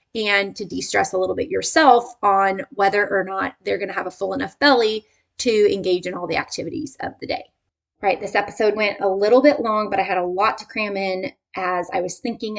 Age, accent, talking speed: 20-39, American, 225 wpm